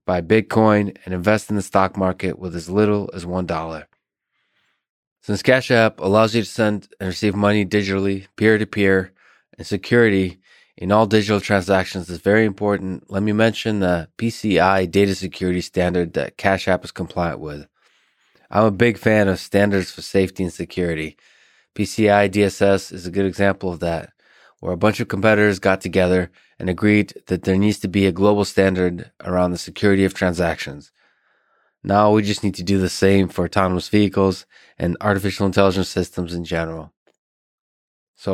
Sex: male